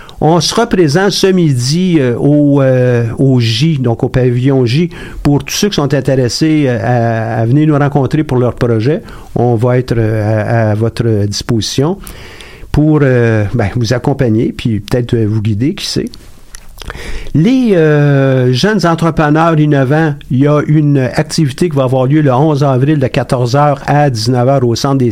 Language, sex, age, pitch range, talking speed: French, male, 50-69, 115-150 Hz, 165 wpm